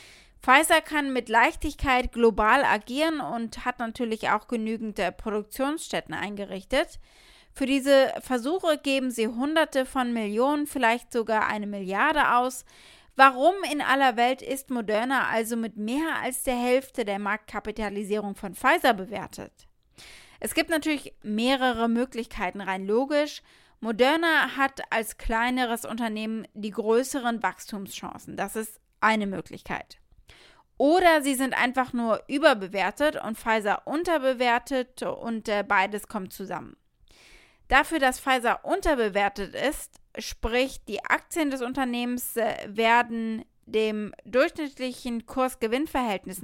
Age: 20-39